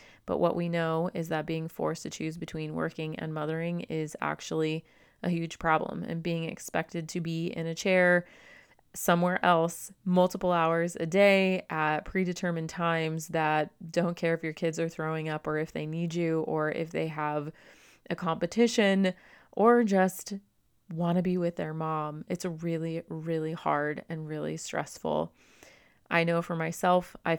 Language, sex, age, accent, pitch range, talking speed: English, female, 30-49, American, 160-180 Hz, 170 wpm